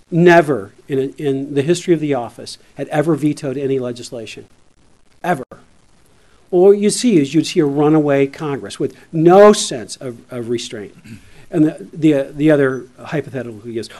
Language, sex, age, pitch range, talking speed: English, male, 50-69, 135-175 Hz, 165 wpm